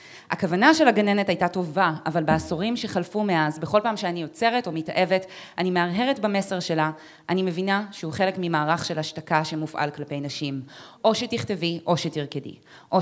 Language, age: Hebrew, 20-39